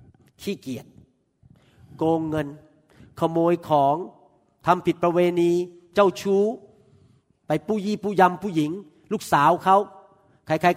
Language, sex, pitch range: Thai, male, 150-220 Hz